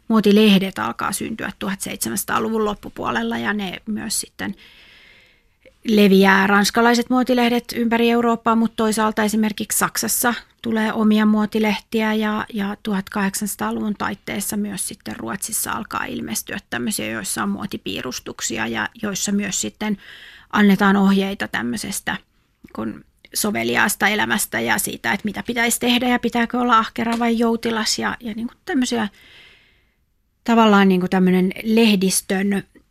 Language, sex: Finnish, female